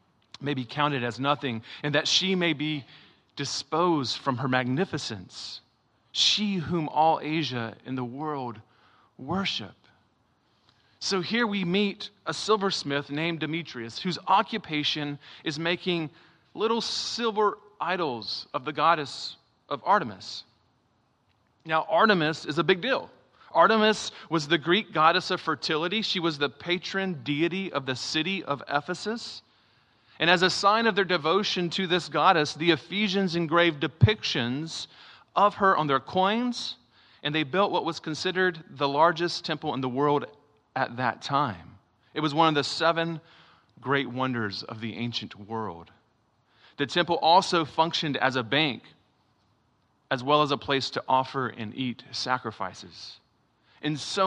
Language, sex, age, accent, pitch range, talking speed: English, male, 40-59, American, 125-175 Hz, 145 wpm